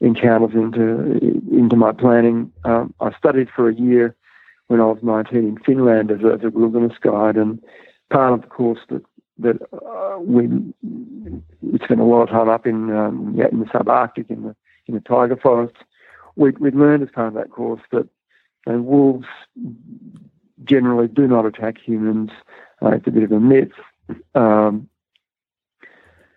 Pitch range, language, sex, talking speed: 110-125 Hz, English, male, 160 wpm